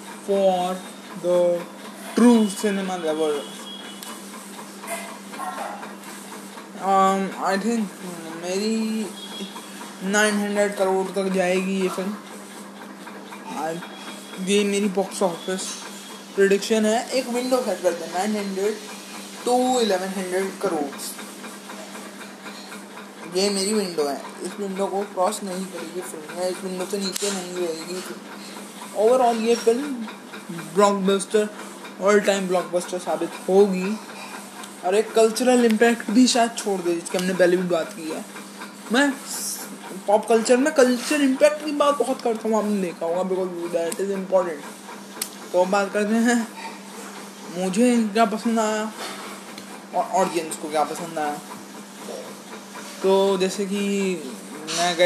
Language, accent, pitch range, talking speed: English, Indian, 185-220 Hz, 70 wpm